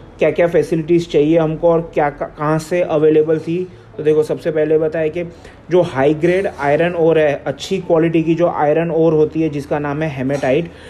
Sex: male